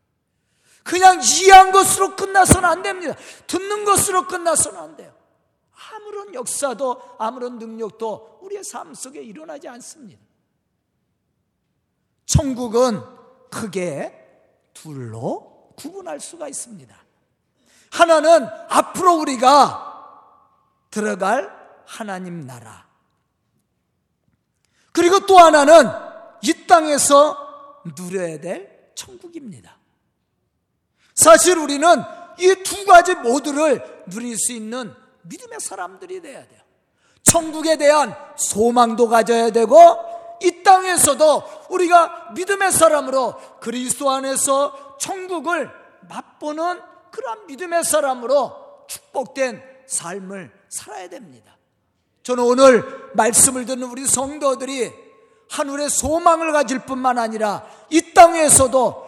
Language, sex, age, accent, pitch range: Korean, male, 40-59, native, 250-345 Hz